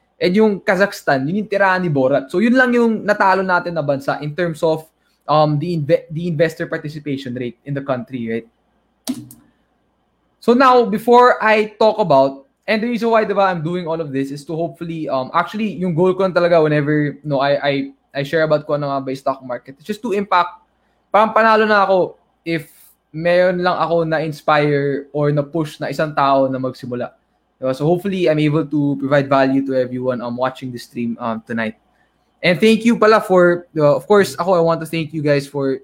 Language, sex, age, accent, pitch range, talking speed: English, male, 20-39, Filipino, 140-180 Hz, 200 wpm